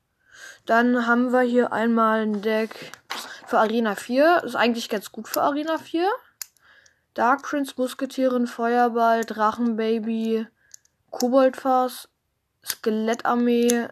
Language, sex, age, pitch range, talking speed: German, female, 10-29, 220-280 Hz, 105 wpm